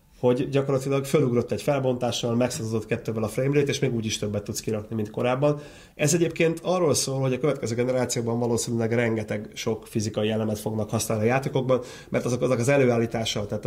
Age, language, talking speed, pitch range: 30-49, Hungarian, 180 wpm, 115-135 Hz